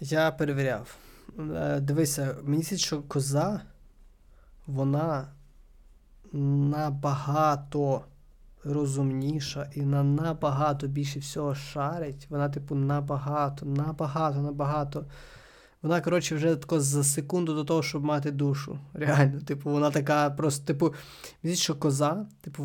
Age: 20-39